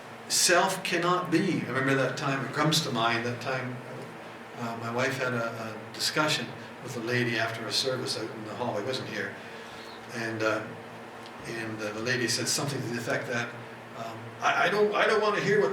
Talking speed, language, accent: 210 wpm, English, American